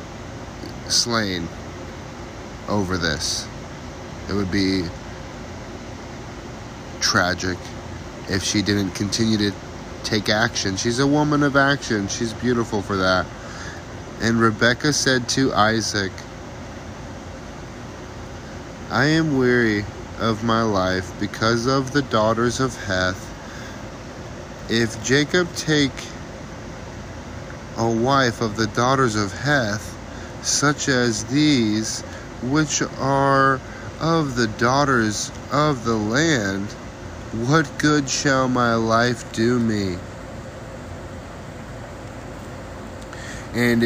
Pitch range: 100-125 Hz